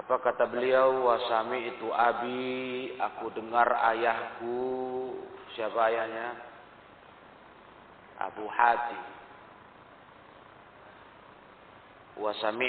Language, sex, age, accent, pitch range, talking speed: Indonesian, male, 40-59, native, 115-130 Hz, 65 wpm